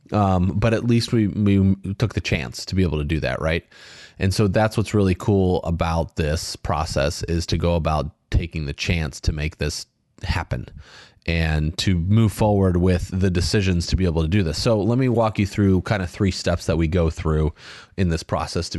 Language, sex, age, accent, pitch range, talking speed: English, male, 30-49, American, 80-100 Hz, 215 wpm